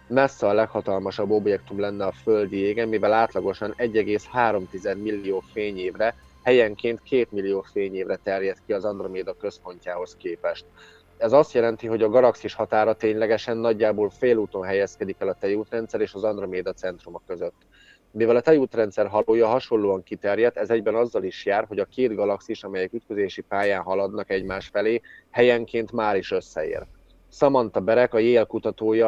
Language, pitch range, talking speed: Hungarian, 100-115 Hz, 150 wpm